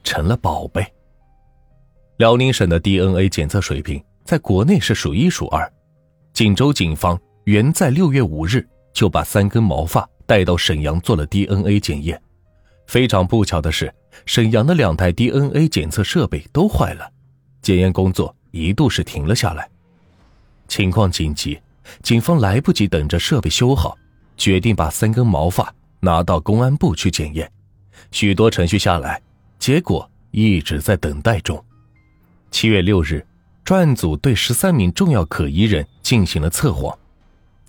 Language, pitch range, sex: Chinese, 85-115 Hz, male